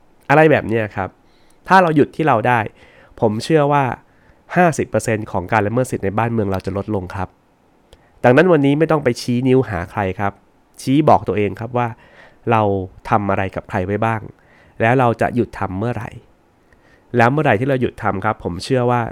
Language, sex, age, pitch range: Thai, male, 20-39, 100-130 Hz